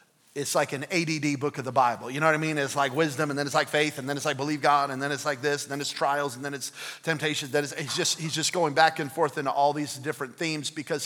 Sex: male